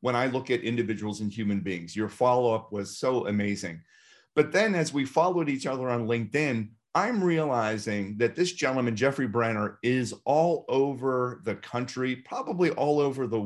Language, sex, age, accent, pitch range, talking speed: English, male, 40-59, American, 110-145 Hz, 170 wpm